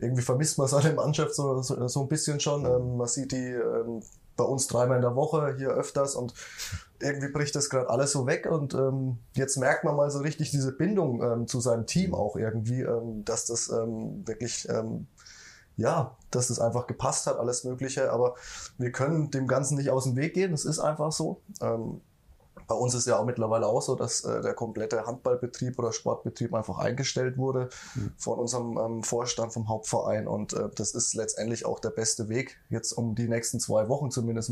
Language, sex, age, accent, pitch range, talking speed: German, male, 20-39, German, 120-140 Hz, 195 wpm